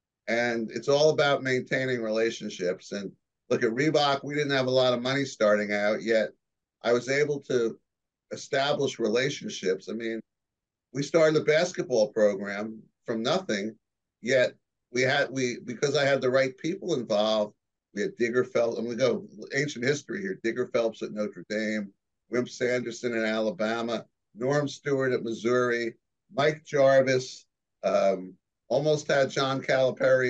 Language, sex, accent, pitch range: English, male, American, 110-140 Hz